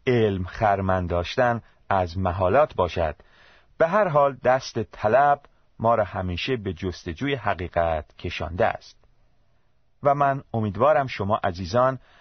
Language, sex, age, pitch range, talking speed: Persian, male, 30-49, 95-130 Hz, 115 wpm